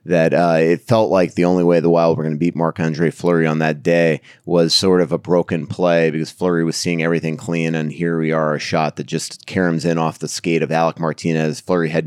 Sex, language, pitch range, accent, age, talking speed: male, English, 80-95 Hz, American, 30-49, 245 wpm